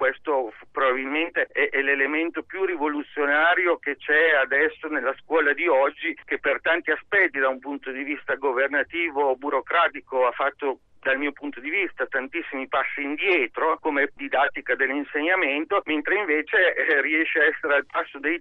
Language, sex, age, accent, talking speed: Italian, male, 50-69, native, 155 wpm